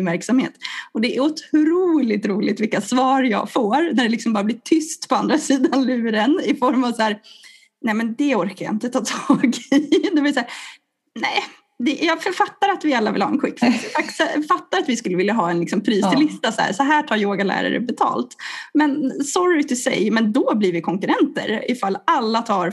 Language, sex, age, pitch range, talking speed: Swedish, female, 20-39, 215-300 Hz, 210 wpm